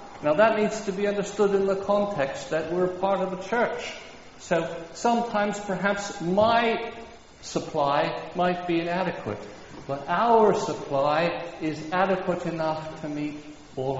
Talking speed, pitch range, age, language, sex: 135 wpm, 110-170 Hz, 60-79, English, male